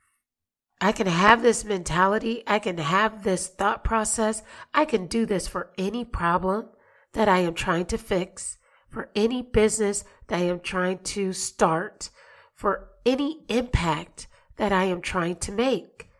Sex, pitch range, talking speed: female, 185-230 Hz, 155 wpm